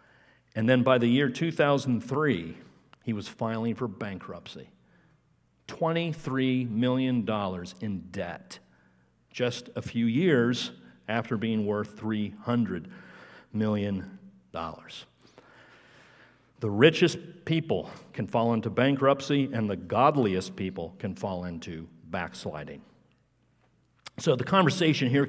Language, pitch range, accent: English, 115-145 Hz, American